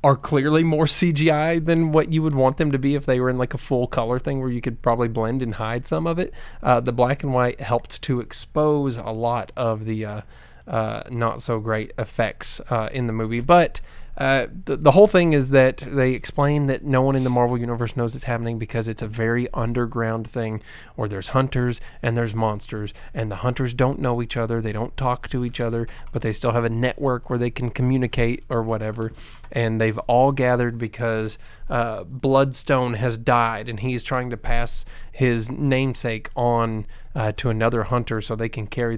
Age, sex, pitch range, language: 20-39, male, 115-130 Hz, English